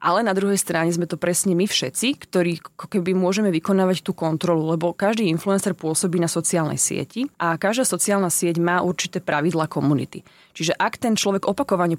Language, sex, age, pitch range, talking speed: Slovak, female, 20-39, 165-195 Hz, 175 wpm